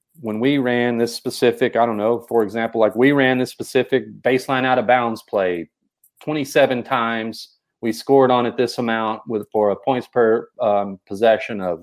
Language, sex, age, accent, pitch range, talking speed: English, male, 40-59, American, 115-140 Hz, 185 wpm